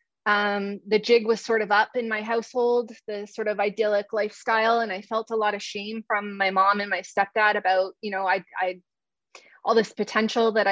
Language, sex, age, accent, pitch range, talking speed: English, female, 20-39, American, 200-230 Hz, 205 wpm